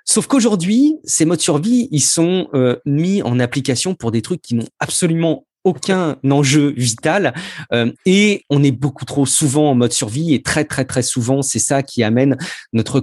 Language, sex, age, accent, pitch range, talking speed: French, male, 30-49, French, 130-190 Hz, 185 wpm